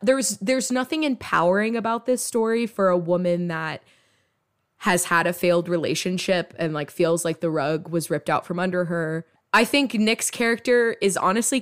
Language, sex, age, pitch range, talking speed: English, female, 20-39, 175-230 Hz, 175 wpm